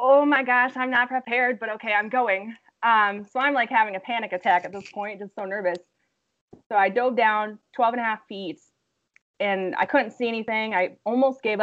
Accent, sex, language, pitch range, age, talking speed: American, female, English, 190-240 Hz, 20-39, 210 wpm